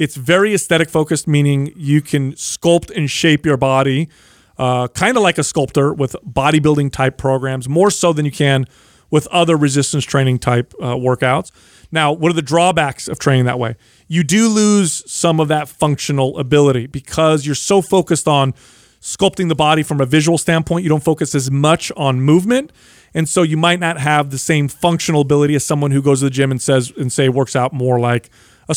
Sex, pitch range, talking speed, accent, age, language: male, 135-170 Hz, 190 wpm, American, 30-49, English